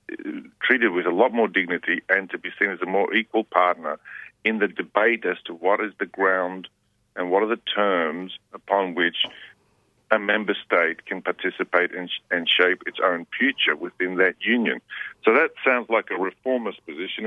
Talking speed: 175 wpm